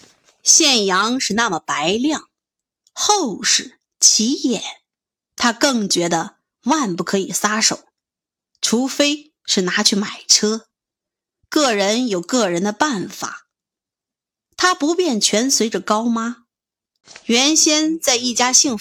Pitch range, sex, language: 210-310 Hz, female, Chinese